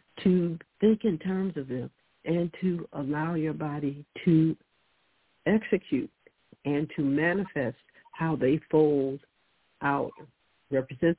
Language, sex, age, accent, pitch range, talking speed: English, female, 60-79, American, 150-200 Hz, 115 wpm